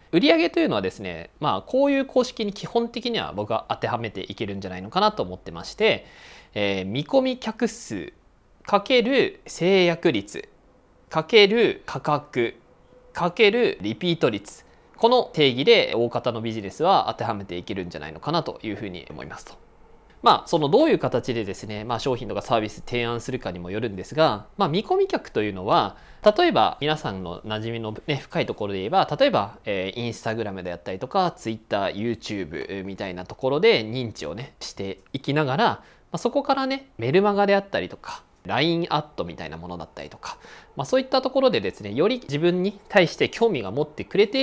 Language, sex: Japanese, male